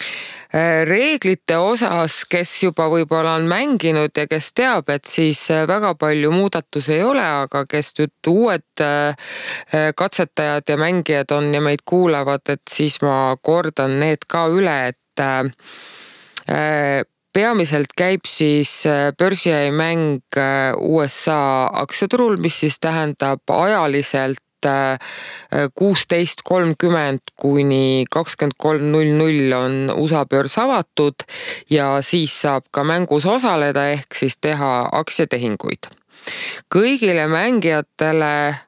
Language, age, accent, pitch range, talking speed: English, 20-39, Finnish, 140-165 Hz, 100 wpm